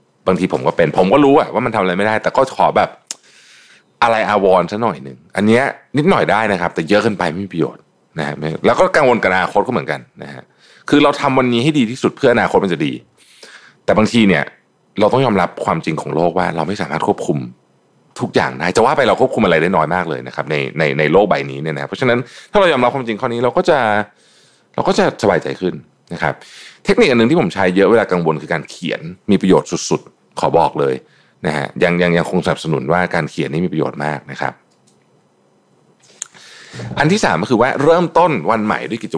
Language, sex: Thai, male